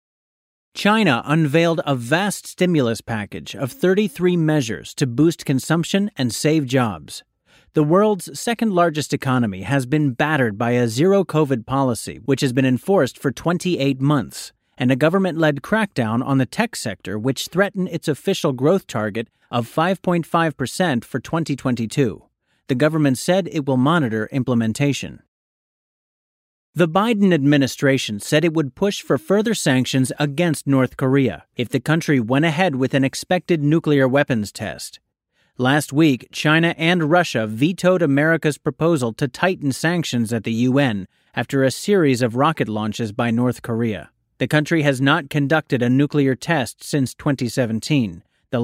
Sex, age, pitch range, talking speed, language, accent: male, 40-59, 125-165 Hz, 145 wpm, English, American